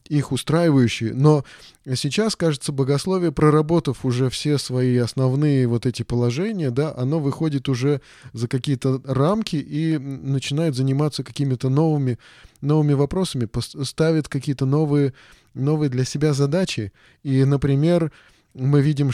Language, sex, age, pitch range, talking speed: Russian, male, 20-39, 130-155 Hz, 120 wpm